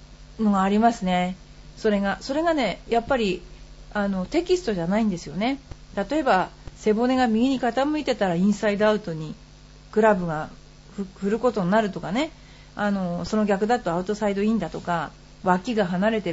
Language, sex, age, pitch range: Japanese, female, 40-59, 180-245 Hz